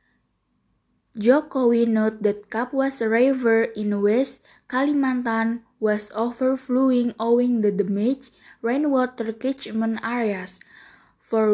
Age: 20-39